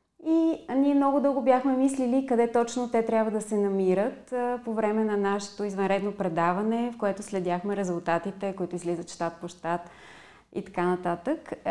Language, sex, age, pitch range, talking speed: Bulgarian, female, 30-49, 180-230 Hz, 160 wpm